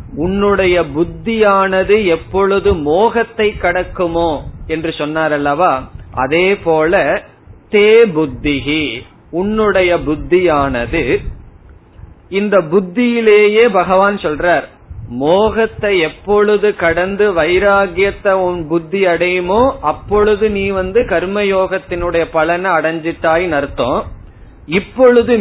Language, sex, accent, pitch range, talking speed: Tamil, male, native, 150-200 Hz, 70 wpm